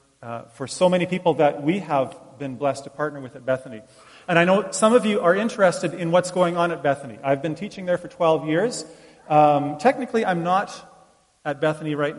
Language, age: English, 40-59